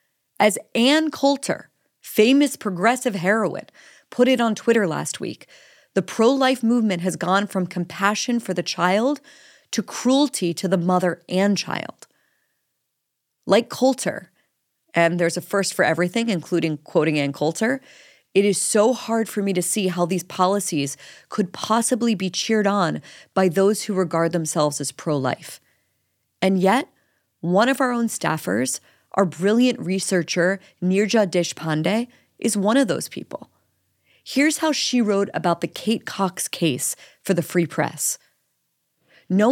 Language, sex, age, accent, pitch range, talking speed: English, female, 30-49, American, 175-225 Hz, 145 wpm